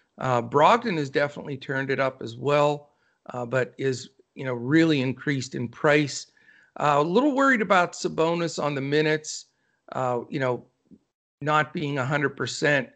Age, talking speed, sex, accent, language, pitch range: 50-69, 155 wpm, male, American, English, 130-165 Hz